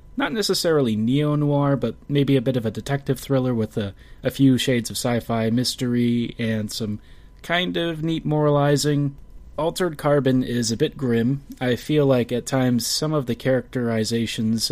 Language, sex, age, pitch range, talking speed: English, male, 30-49, 115-140 Hz, 165 wpm